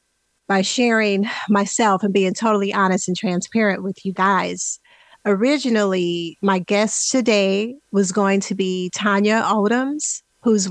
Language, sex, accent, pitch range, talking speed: English, female, American, 195-230 Hz, 130 wpm